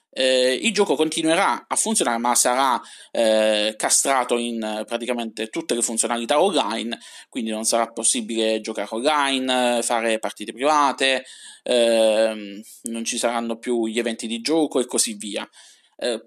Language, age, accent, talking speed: Italian, 20-39, native, 140 wpm